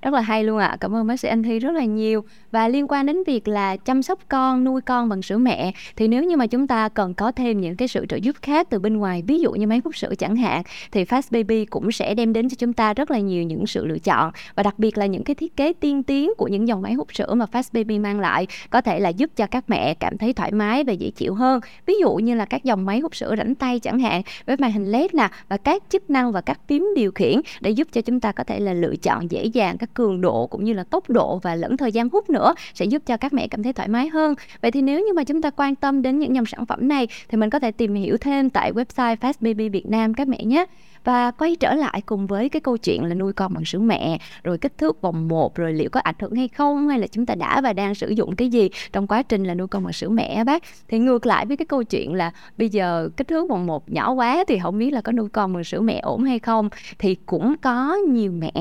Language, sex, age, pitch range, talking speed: Vietnamese, female, 20-39, 205-265 Hz, 290 wpm